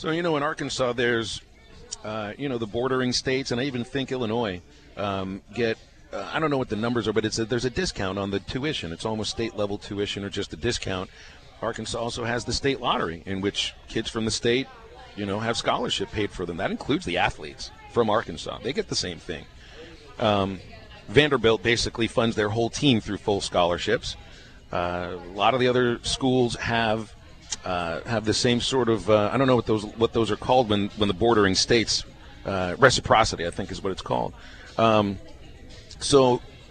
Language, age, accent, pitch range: English, 40-59, American, 100-125 Hz